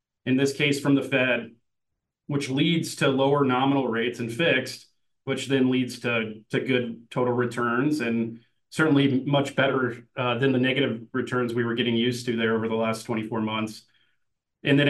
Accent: American